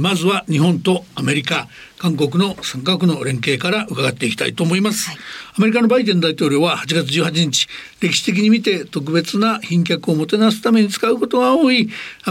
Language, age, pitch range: Japanese, 60-79, 155-215 Hz